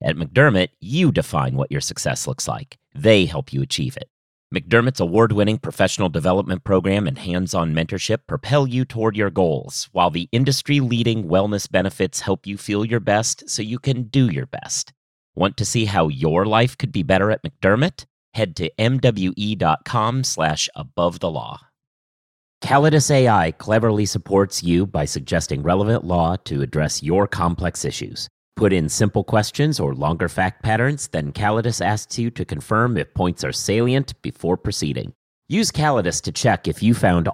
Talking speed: 165 wpm